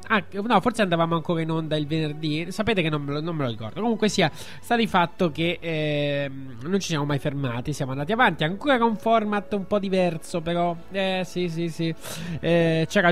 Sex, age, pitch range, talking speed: male, 20-39, 150-185 Hz, 215 wpm